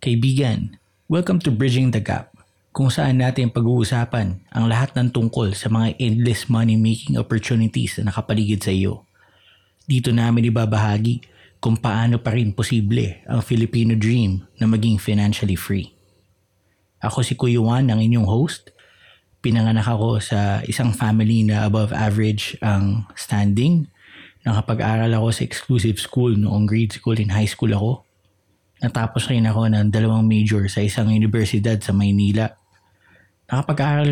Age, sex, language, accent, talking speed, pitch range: 20-39, male, Filipino, native, 140 wpm, 105-120 Hz